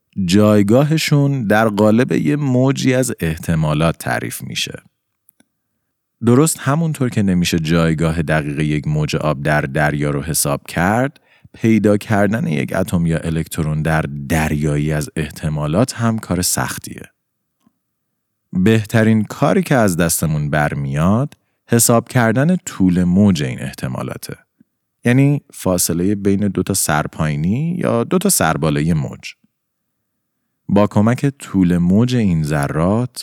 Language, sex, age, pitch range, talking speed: Persian, male, 30-49, 85-125 Hz, 115 wpm